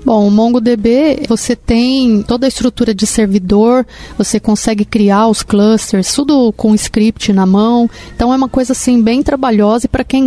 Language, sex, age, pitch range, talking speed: Portuguese, female, 30-49, 210-240 Hz, 175 wpm